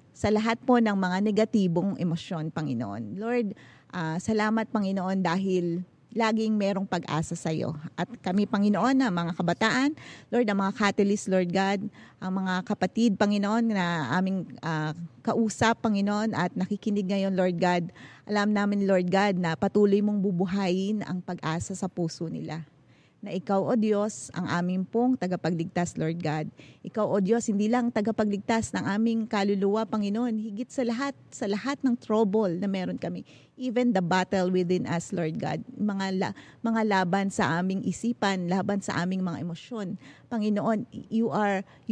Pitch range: 180-220 Hz